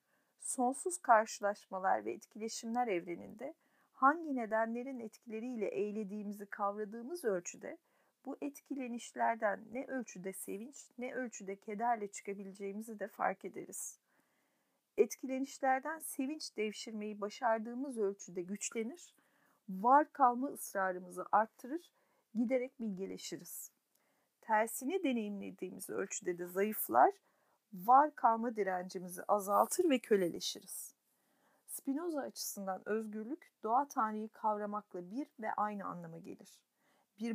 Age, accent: 40-59, native